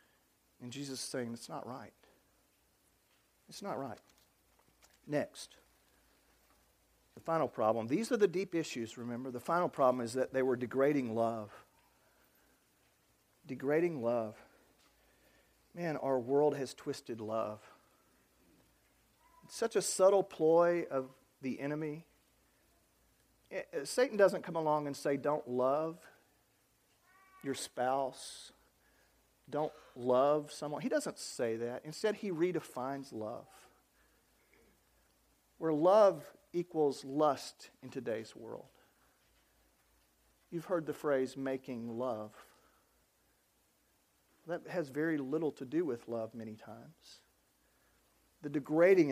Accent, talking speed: American, 110 wpm